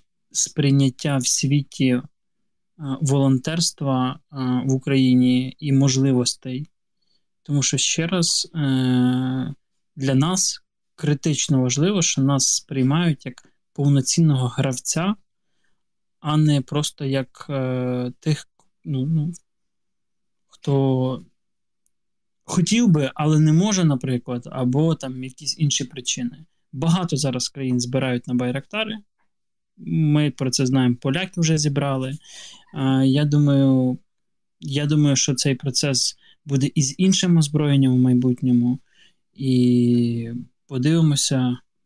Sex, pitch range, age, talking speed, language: male, 130-155 Hz, 20-39, 100 wpm, Ukrainian